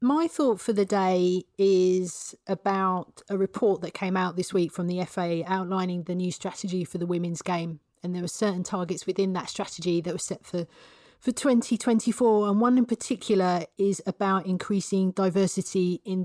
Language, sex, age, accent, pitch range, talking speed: English, female, 30-49, British, 180-215 Hz, 175 wpm